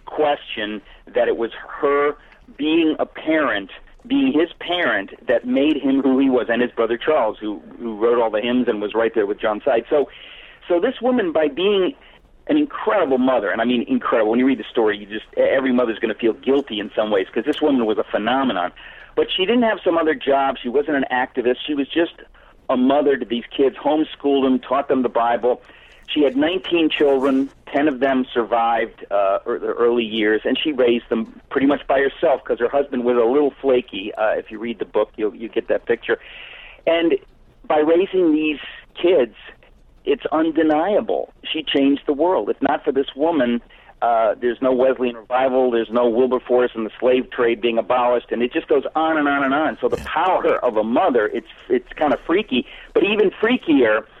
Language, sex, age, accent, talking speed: English, male, 50-69, American, 205 wpm